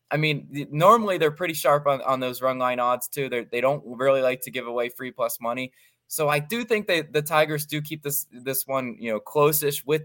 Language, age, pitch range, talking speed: English, 20-39, 120-150 Hz, 240 wpm